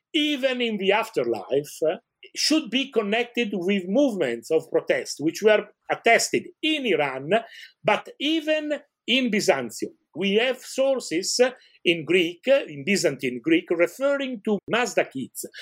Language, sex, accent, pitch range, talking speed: English, male, Italian, 180-270 Hz, 125 wpm